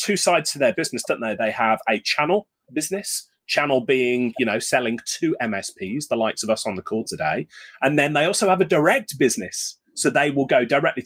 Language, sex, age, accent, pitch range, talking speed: English, male, 30-49, British, 130-200 Hz, 215 wpm